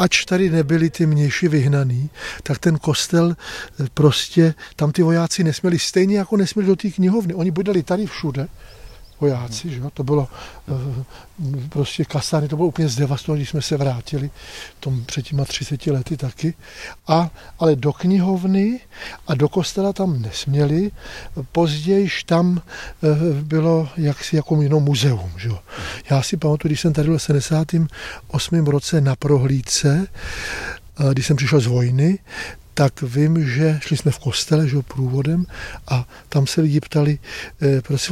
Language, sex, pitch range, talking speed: Czech, male, 140-175 Hz, 150 wpm